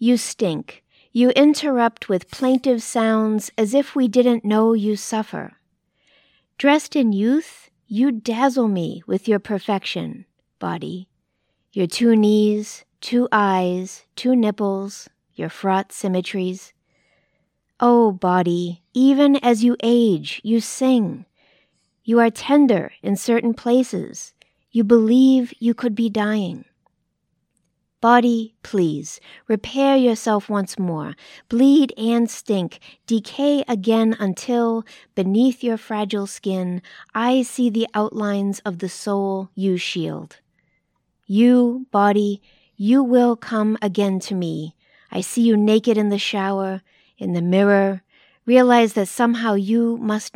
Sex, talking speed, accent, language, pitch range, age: female, 120 wpm, American, English, 195-240 Hz, 40-59